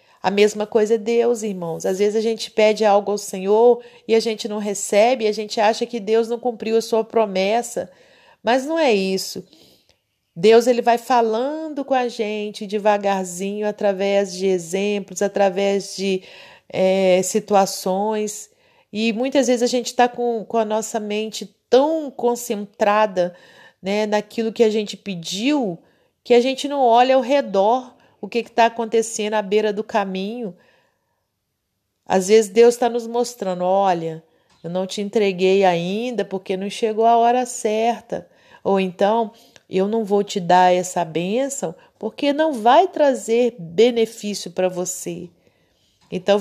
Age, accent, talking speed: 40-59, Brazilian, 150 wpm